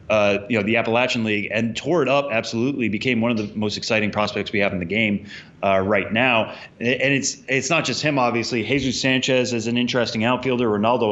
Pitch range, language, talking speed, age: 110-130 Hz, English, 215 wpm, 20-39